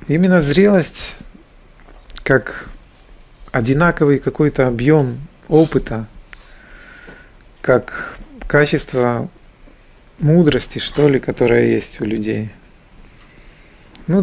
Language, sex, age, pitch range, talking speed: Russian, male, 40-59, 120-170 Hz, 70 wpm